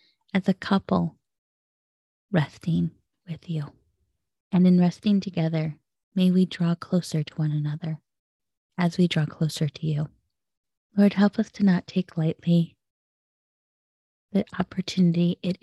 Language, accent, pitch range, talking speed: English, American, 145-180 Hz, 125 wpm